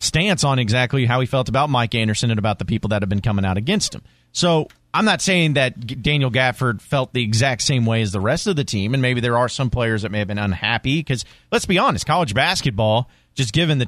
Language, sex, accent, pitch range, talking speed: English, male, American, 110-160 Hz, 250 wpm